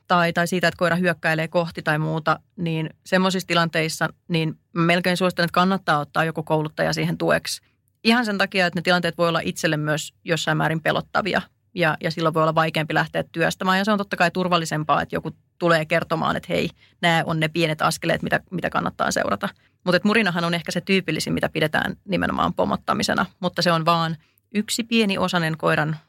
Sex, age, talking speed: female, 30-49, 185 wpm